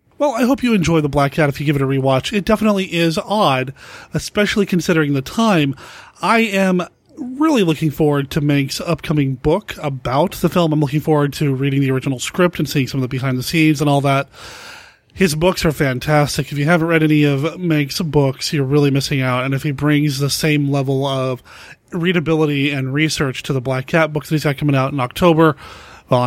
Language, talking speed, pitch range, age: English, 210 wpm, 140-190 Hz, 30-49